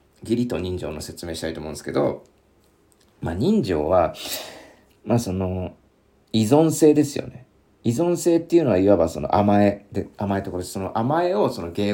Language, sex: Japanese, male